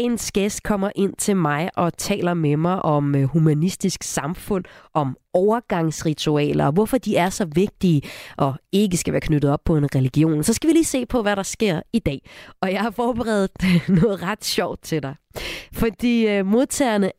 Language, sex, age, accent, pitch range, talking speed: Danish, female, 30-49, native, 160-220 Hz, 180 wpm